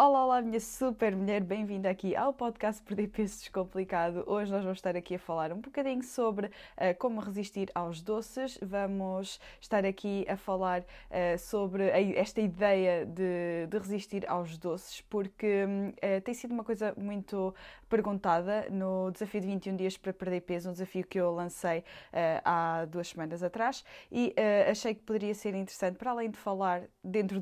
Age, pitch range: 20-39, 185-215 Hz